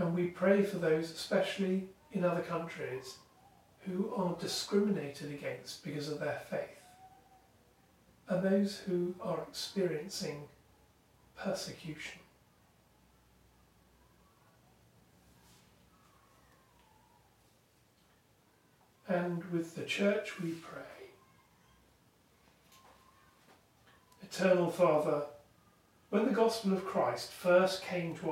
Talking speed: 85 wpm